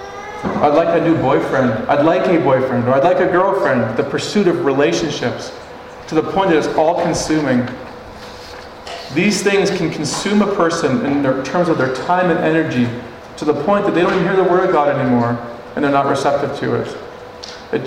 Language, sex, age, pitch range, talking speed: English, male, 40-59, 130-170 Hz, 190 wpm